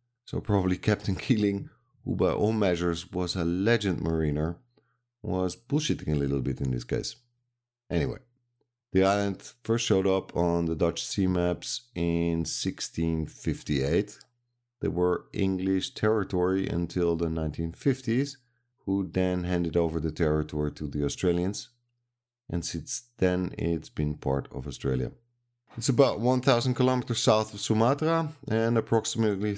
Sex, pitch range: male, 85-120 Hz